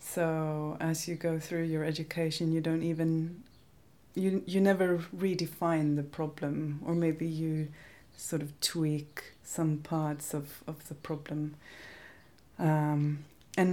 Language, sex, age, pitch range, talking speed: Swedish, female, 30-49, 150-175 Hz, 130 wpm